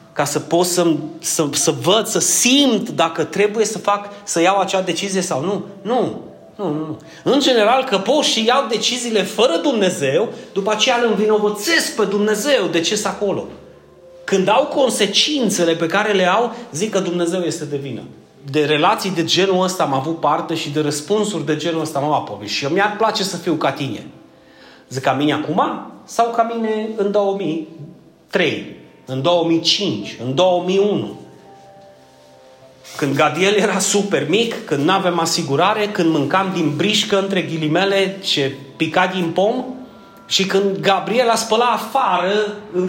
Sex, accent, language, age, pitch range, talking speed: male, native, Romanian, 30-49, 155-210 Hz, 160 wpm